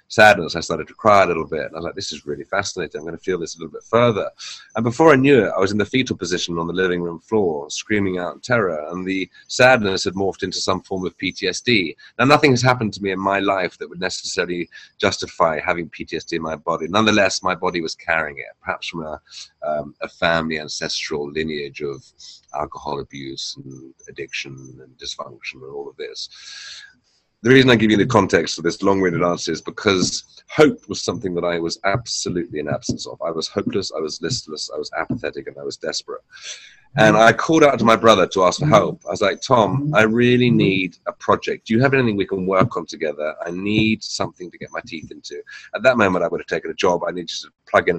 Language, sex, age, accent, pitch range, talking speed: English, male, 30-49, British, 85-140 Hz, 230 wpm